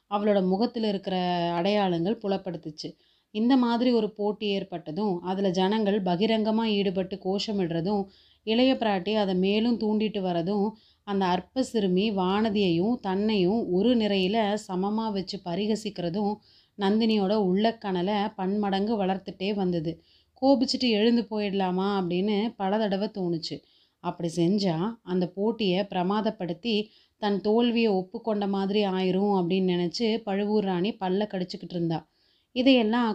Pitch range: 185-215 Hz